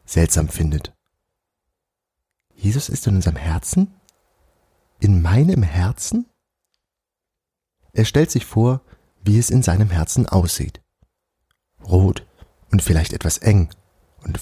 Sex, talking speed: male, 110 wpm